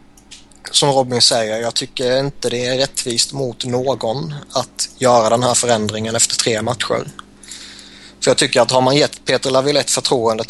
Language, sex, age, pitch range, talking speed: Swedish, male, 20-39, 105-130 Hz, 165 wpm